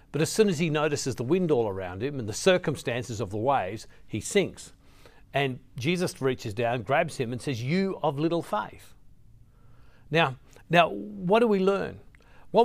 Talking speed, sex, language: 180 wpm, male, English